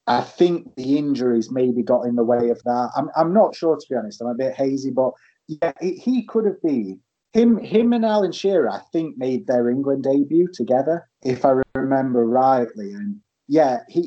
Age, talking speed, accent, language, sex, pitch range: 30-49, 195 wpm, British, English, male, 120-150 Hz